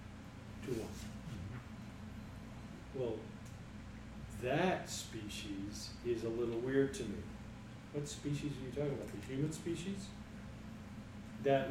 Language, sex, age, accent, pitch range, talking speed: English, male, 40-59, American, 110-150 Hz, 95 wpm